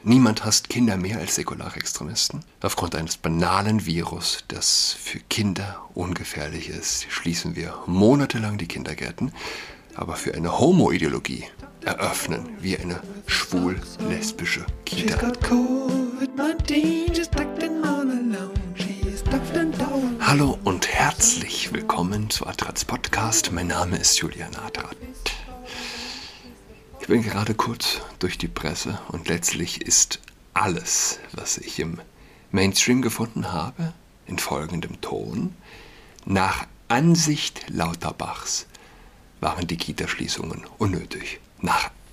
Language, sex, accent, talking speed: German, male, German, 100 wpm